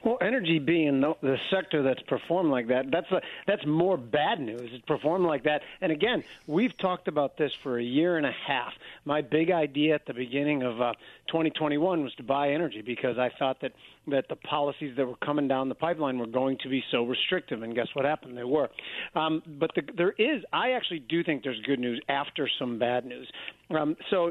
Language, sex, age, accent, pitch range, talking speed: English, male, 50-69, American, 130-165 Hz, 215 wpm